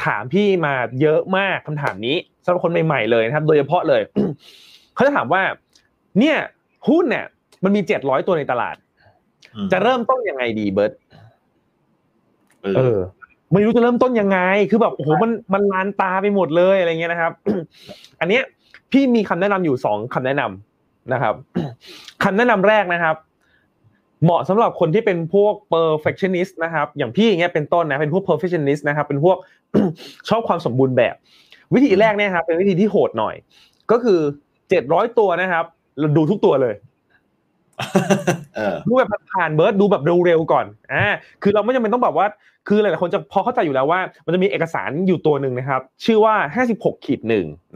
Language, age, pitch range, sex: Thai, 20-39, 155-205 Hz, male